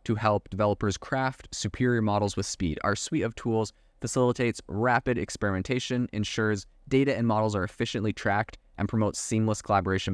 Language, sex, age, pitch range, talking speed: English, male, 20-39, 100-115 Hz, 155 wpm